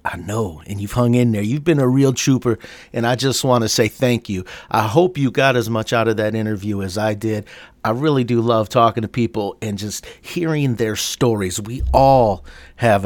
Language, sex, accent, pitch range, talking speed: English, male, American, 105-130 Hz, 220 wpm